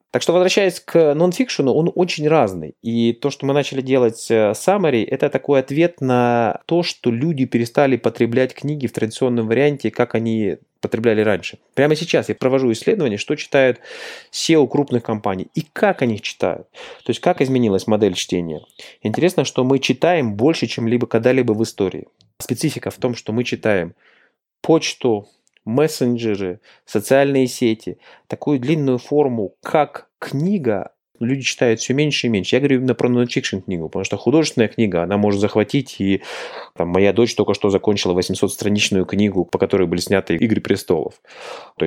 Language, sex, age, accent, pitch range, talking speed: Russian, male, 20-39, native, 105-140 Hz, 160 wpm